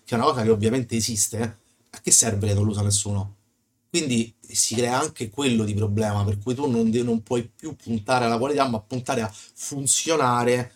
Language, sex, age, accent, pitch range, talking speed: Italian, male, 30-49, native, 110-125 Hz, 200 wpm